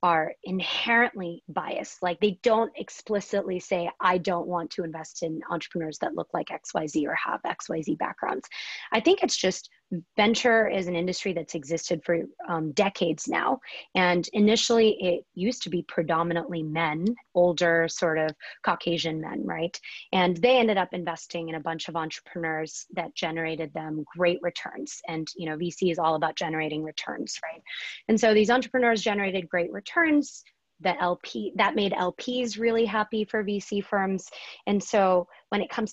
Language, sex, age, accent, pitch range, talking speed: English, female, 20-39, American, 170-210 Hz, 165 wpm